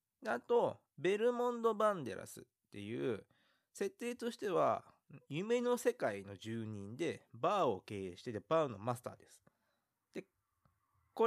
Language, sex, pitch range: Japanese, male, 110-180 Hz